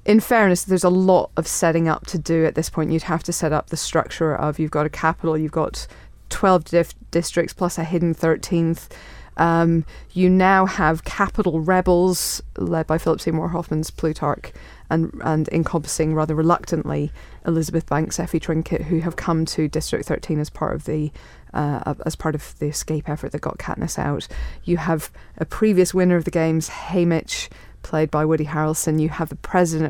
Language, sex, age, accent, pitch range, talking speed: English, female, 30-49, British, 150-170 Hz, 185 wpm